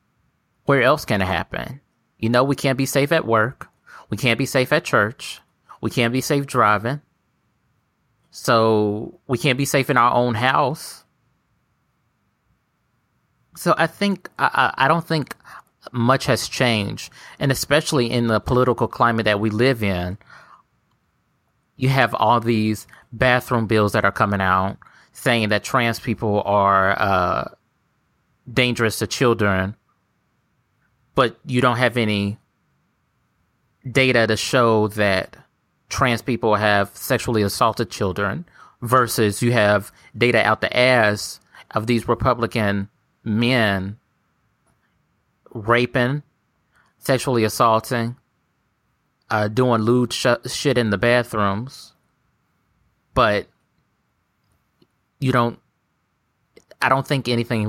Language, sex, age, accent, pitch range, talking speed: English, male, 30-49, American, 110-130 Hz, 120 wpm